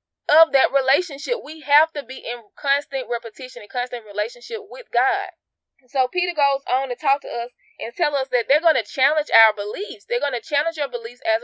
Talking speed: 210 wpm